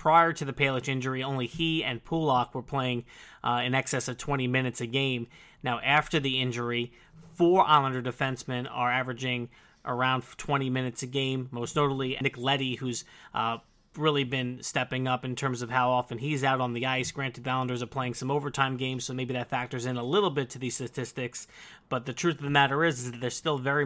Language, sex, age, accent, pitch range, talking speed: English, male, 30-49, American, 125-140 Hz, 210 wpm